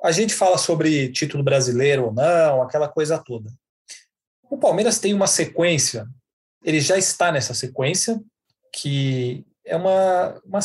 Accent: Brazilian